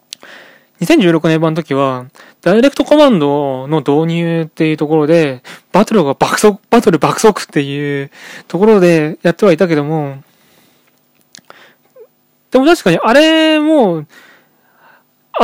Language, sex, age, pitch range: Japanese, male, 20-39, 155-240 Hz